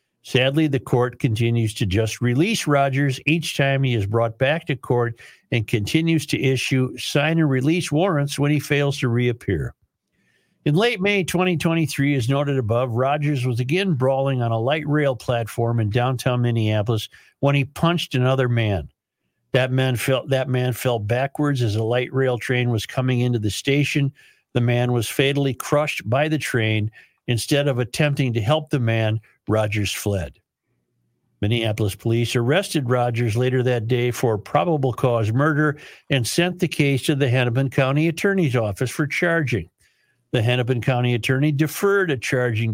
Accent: American